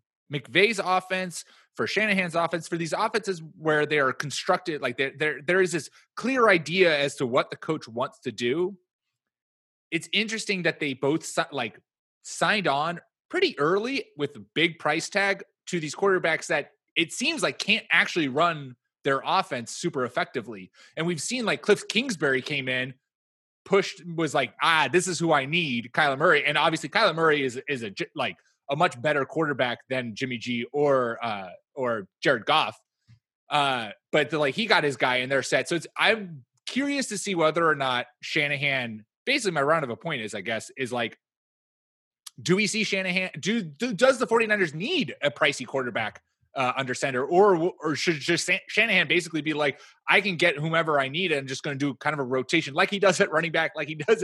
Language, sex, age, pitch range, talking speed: English, male, 20-39, 135-185 Hz, 195 wpm